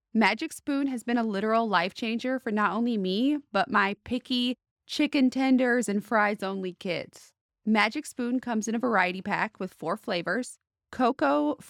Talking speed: 165 wpm